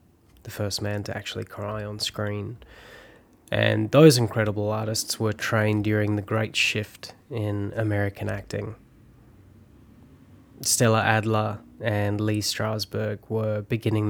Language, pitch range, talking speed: English, 105-115 Hz, 120 wpm